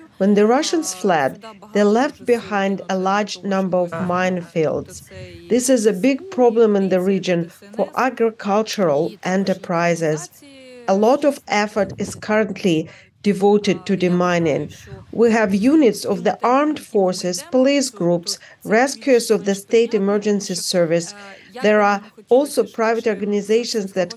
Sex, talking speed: female, 130 wpm